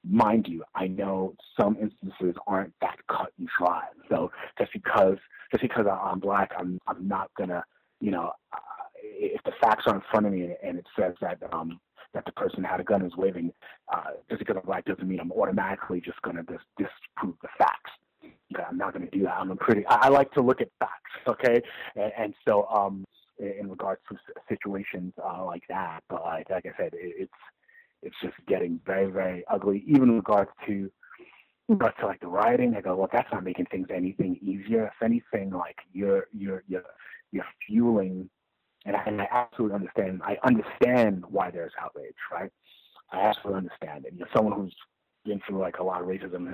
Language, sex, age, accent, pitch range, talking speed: English, male, 30-49, American, 95-115 Hz, 200 wpm